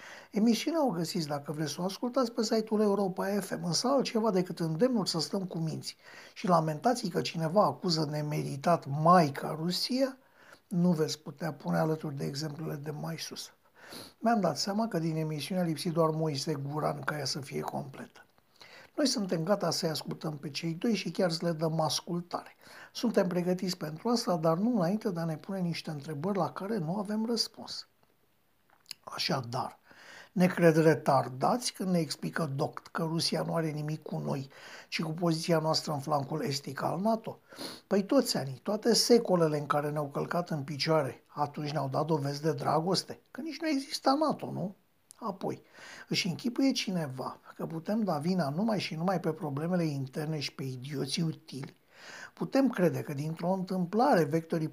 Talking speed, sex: 170 wpm, male